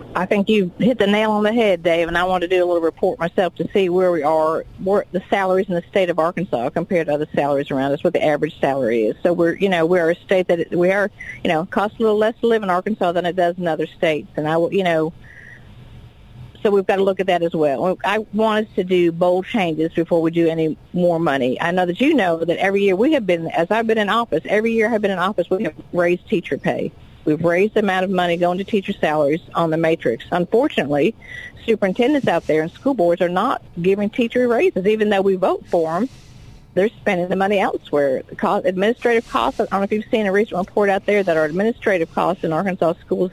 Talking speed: 250 wpm